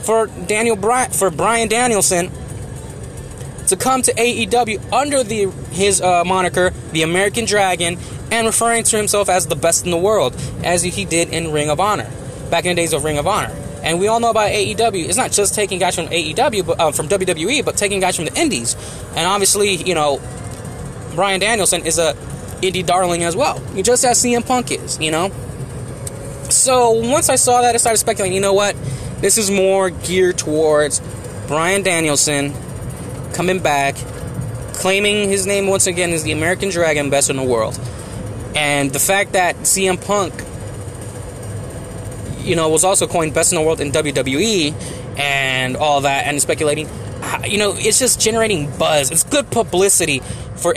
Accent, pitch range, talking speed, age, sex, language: American, 140-200 Hz, 175 wpm, 20-39, male, English